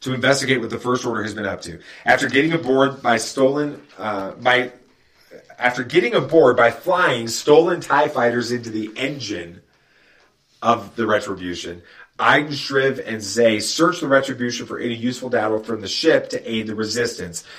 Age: 30-49